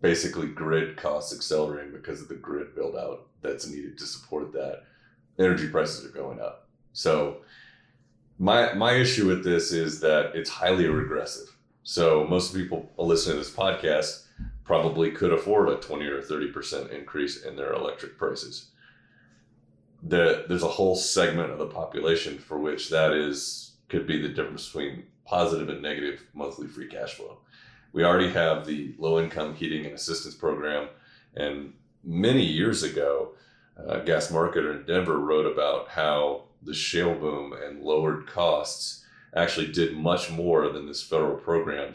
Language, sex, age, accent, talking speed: English, male, 30-49, American, 155 wpm